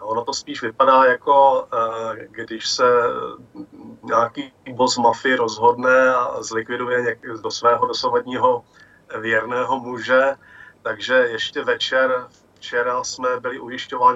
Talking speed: 105 wpm